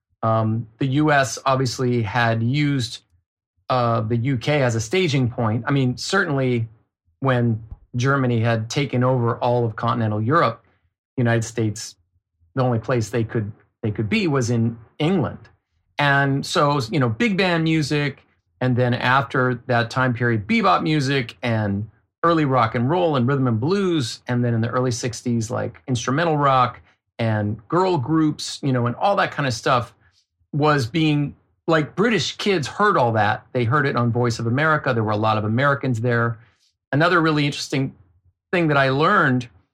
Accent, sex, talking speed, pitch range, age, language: American, male, 170 wpm, 110-140 Hz, 40-59, English